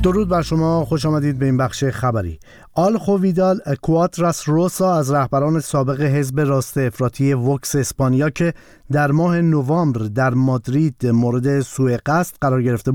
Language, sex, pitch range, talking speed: Persian, male, 130-160 Hz, 150 wpm